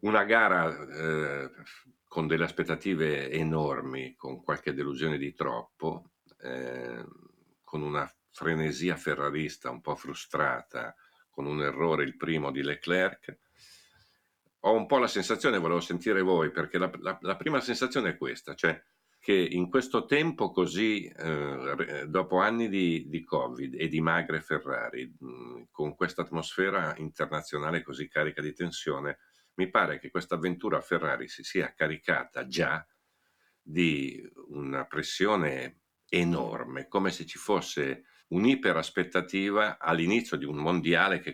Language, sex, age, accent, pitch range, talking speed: Italian, male, 50-69, native, 75-90 Hz, 135 wpm